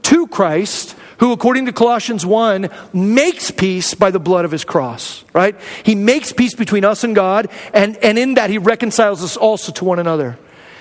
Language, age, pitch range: English, 40-59, 165-215 Hz